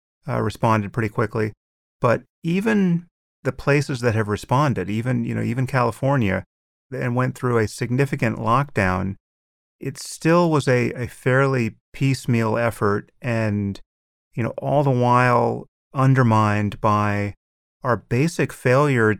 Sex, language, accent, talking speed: male, English, American, 130 wpm